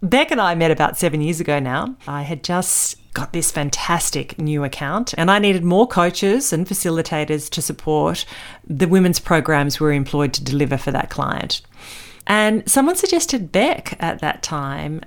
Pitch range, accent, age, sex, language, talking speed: 150-235 Hz, Australian, 40-59, female, English, 175 wpm